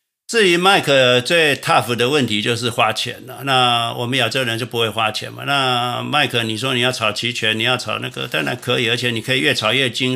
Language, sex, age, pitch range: Chinese, male, 60-79, 115-130 Hz